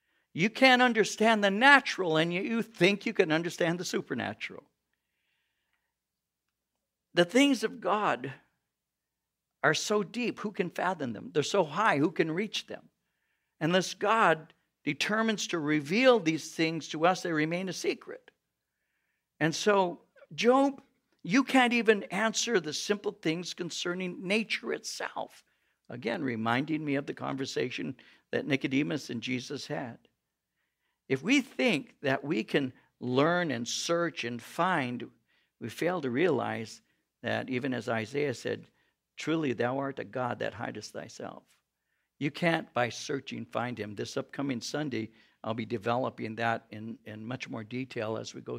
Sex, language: male, English